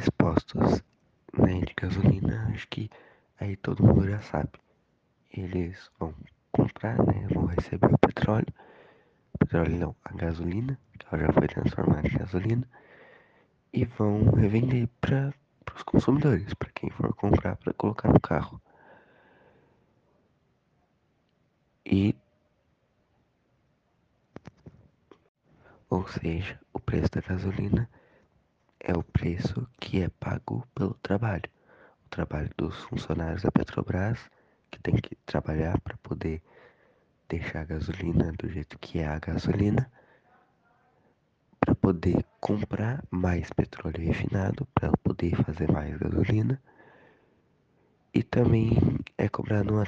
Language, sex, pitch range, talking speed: Portuguese, male, 85-115 Hz, 115 wpm